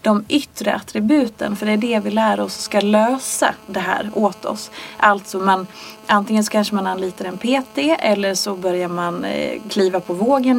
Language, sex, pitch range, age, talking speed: English, female, 190-245 Hz, 30-49, 180 wpm